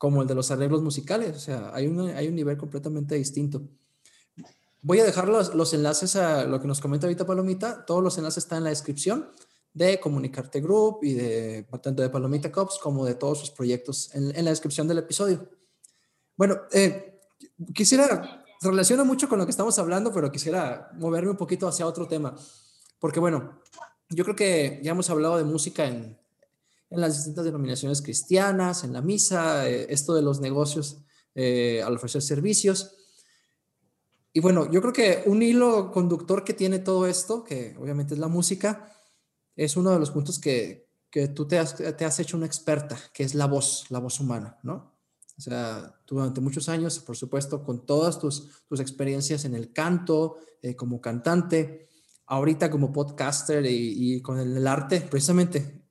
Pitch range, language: 140-180 Hz, Spanish